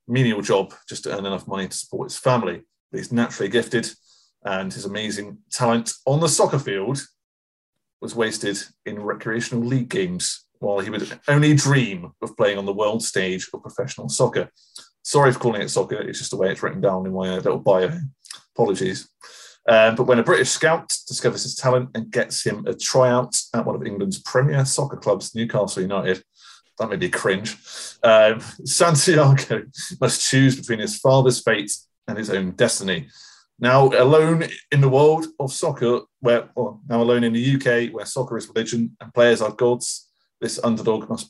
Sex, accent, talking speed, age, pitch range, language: male, British, 180 wpm, 30-49, 110-135 Hz, English